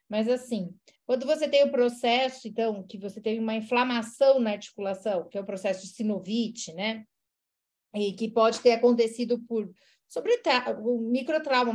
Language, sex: Portuguese, female